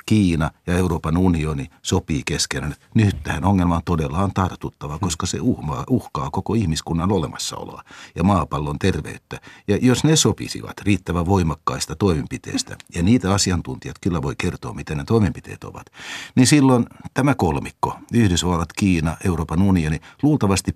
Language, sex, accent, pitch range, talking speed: Finnish, male, native, 80-105 Hz, 140 wpm